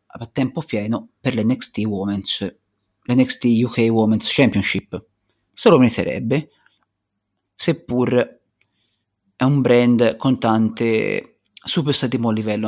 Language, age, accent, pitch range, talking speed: Italian, 30-49, native, 110-145 Hz, 110 wpm